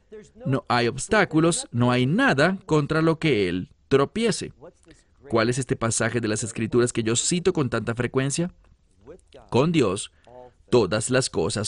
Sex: male